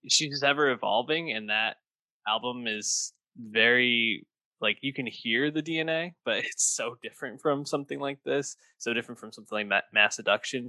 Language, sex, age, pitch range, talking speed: English, male, 20-39, 105-145 Hz, 165 wpm